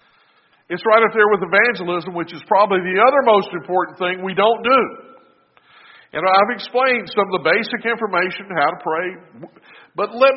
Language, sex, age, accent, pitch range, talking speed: English, male, 50-69, American, 180-240 Hz, 175 wpm